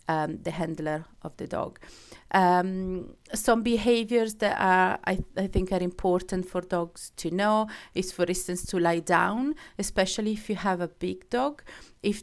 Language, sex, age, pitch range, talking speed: English, female, 30-49, 180-220 Hz, 170 wpm